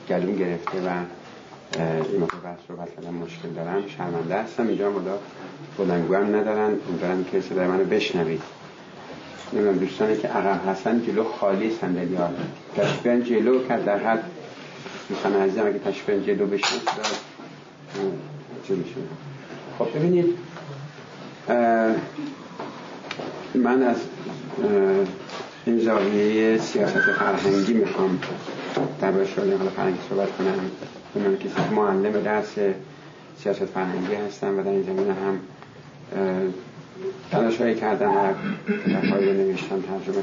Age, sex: 60-79, male